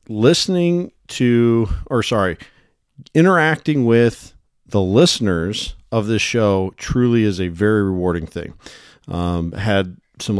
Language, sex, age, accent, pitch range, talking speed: English, male, 40-59, American, 95-115 Hz, 115 wpm